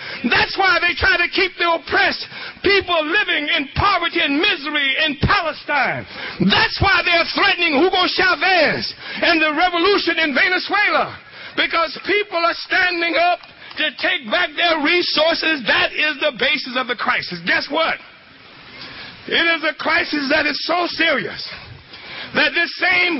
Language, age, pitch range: English, 60-79, 315-375 Hz